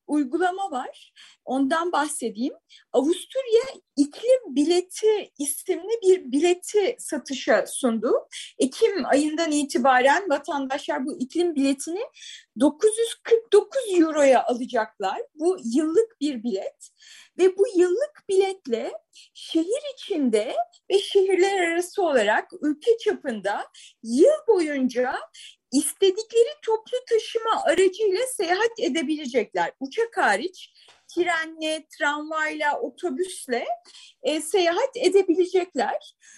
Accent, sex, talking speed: native, female, 90 wpm